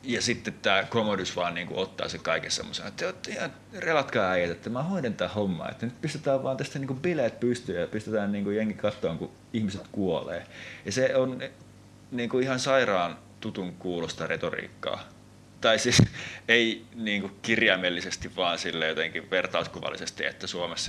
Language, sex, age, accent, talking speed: Finnish, male, 30-49, native, 150 wpm